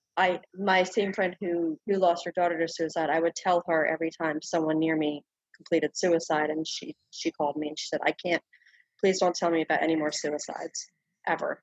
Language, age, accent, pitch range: English, 30-49, American, 165-205 Hz